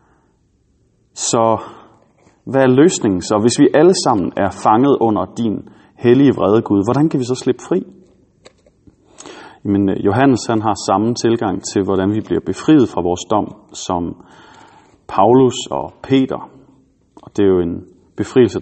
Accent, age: native, 30-49